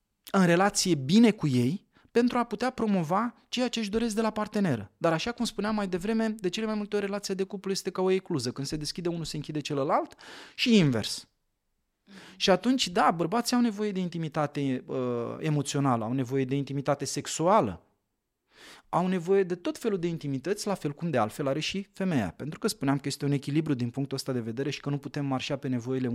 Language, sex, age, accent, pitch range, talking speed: Romanian, male, 20-39, native, 135-190 Hz, 210 wpm